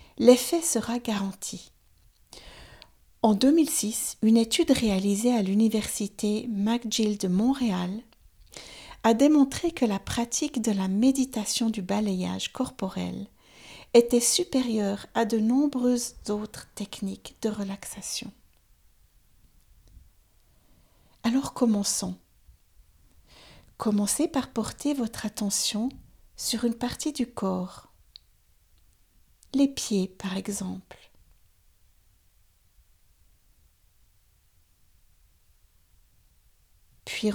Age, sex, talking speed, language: 60-79, female, 80 wpm, French